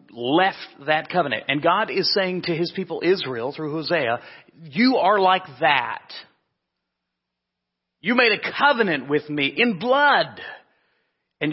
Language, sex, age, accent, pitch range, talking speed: English, male, 40-59, American, 130-170 Hz, 135 wpm